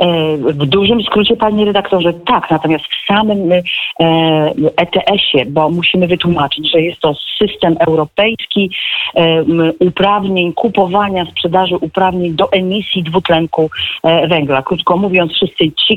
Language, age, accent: Polish, 40-59, native